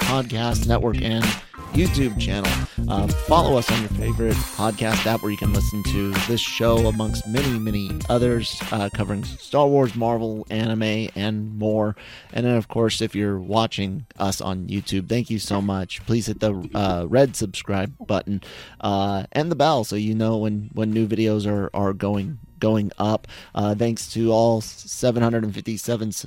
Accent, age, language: American, 30-49, English